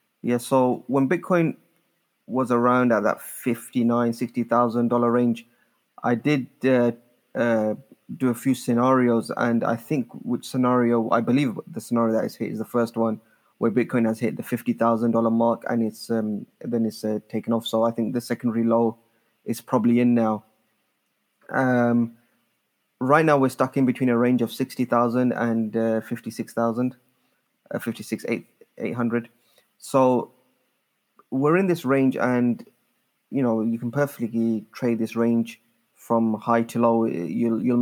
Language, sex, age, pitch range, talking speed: English, male, 20-39, 115-130 Hz, 150 wpm